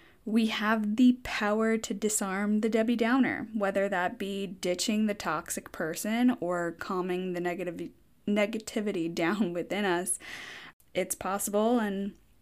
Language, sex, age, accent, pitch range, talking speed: English, female, 10-29, American, 180-240 Hz, 130 wpm